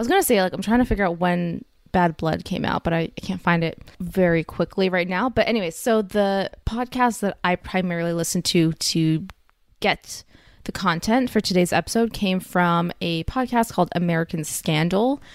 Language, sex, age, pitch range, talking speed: English, female, 20-39, 175-225 Hz, 195 wpm